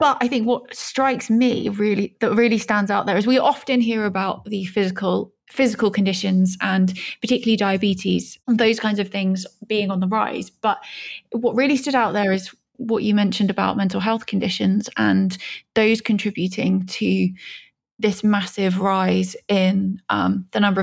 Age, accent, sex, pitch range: 20-39, British, female, 200-240 Hz